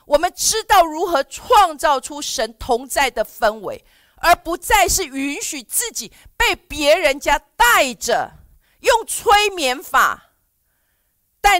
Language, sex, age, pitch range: Chinese, female, 40-59, 255-380 Hz